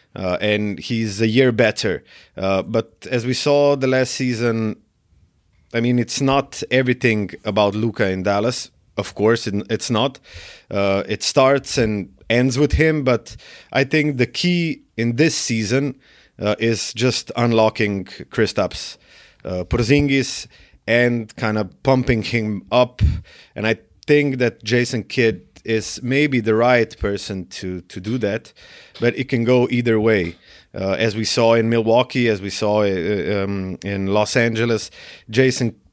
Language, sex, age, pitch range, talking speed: English, male, 30-49, 105-125 Hz, 150 wpm